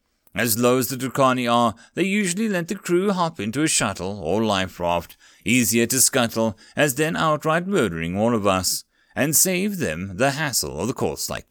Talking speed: 195 wpm